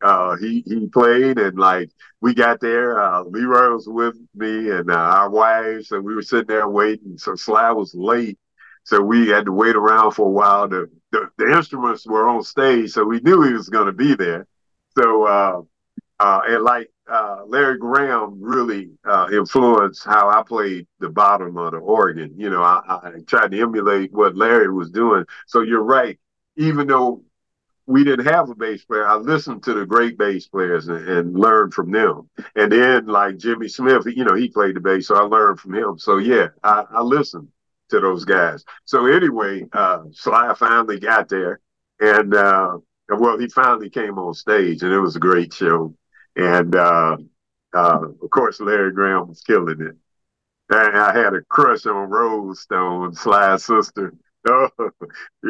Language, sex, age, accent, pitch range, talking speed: English, male, 50-69, American, 95-120 Hz, 185 wpm